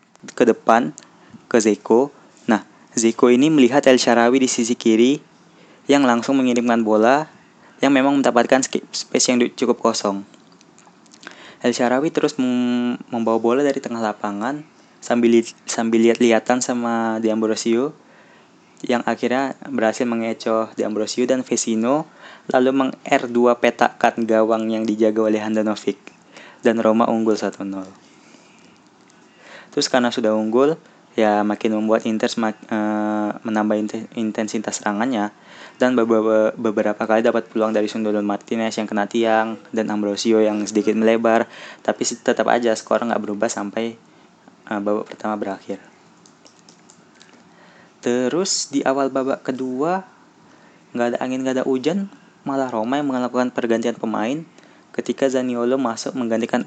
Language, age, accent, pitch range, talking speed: Indonesian, 20-39, native, 110-125 Hz, 130 wpm